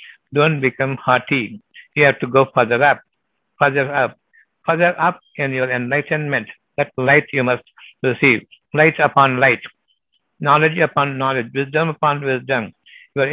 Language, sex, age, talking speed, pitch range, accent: Tamil, male, 60-79, 140 wpm, 130-155 Hz, native